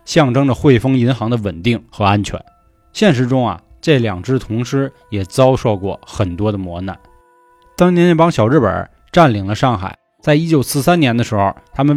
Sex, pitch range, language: male, 105-155 Hz, Chinese